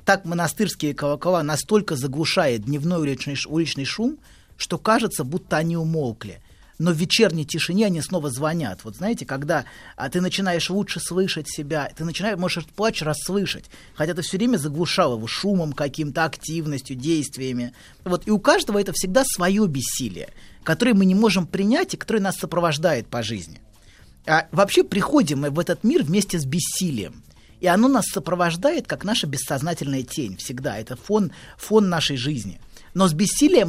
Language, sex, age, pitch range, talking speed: Russian, male, 30-49, 145-195 Hz, 160 wpm